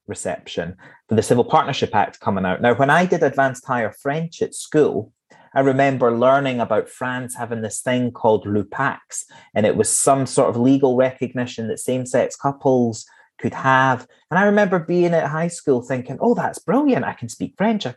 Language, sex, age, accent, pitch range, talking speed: English, male, 30-49, British, 115-145 Hz, 190 wpm